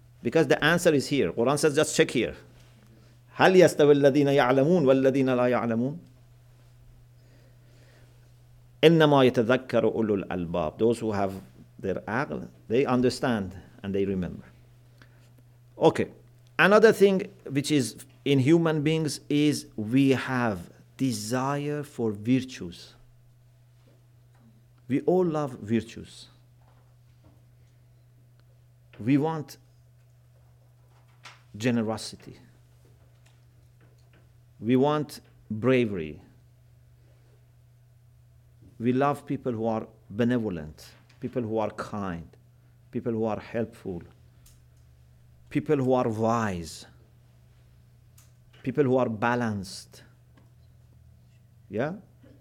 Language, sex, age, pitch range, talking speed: English, male, 50-69, 115-125 Hz, 75 wpm